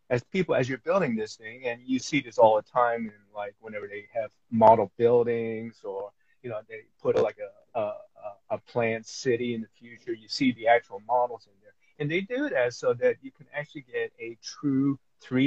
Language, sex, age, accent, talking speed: English, male, 30-49, American, 210 wpm